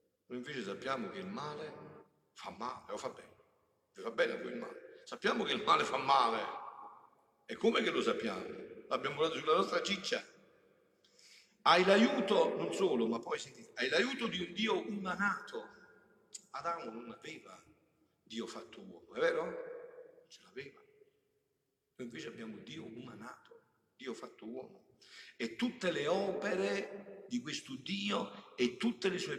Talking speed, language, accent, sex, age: 155 wpm, Italian, native, male, 60-79